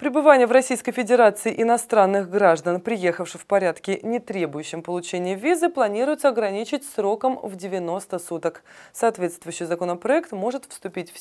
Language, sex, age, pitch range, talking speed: Russian, female, 20-39, 170-230 Hz, 130 wpm